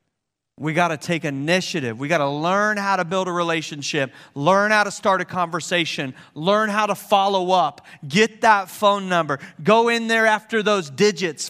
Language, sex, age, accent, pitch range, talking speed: English, male, 40-59, American, 175-230 Hz, 185 wpm